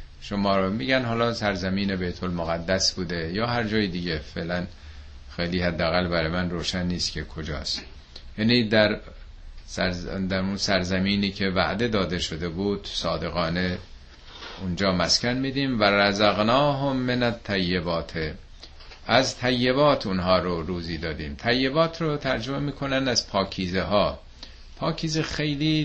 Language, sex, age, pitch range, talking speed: Persian, male, 50-69, 85-130 Hz, 125 wpm